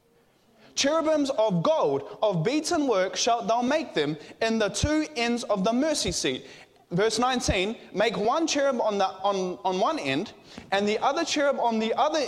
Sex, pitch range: male, 220-295 Hz